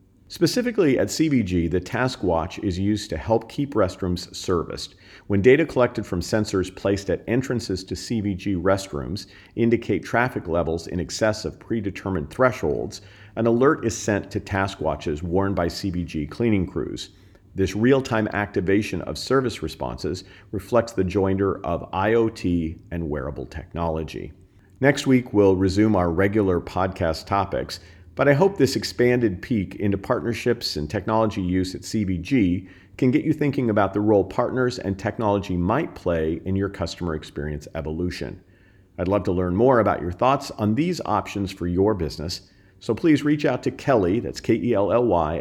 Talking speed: 155 wpm